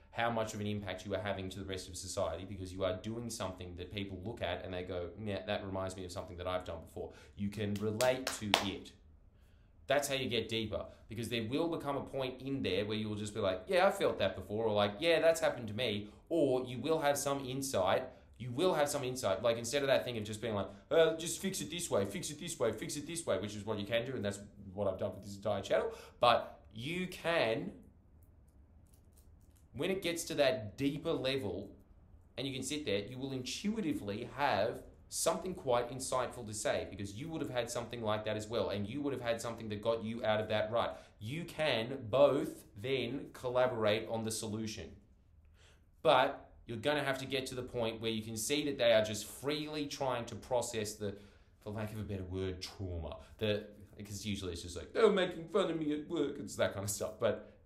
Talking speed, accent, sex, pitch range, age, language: 230 wpm, Australian, male, 95-130 Hz, 20-39, English